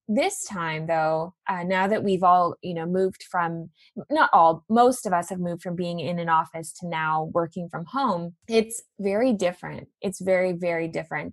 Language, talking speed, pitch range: English, 190 wpm, 175-215 Hz